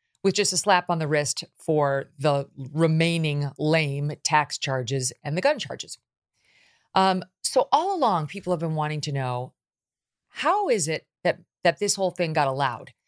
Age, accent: 40-59, American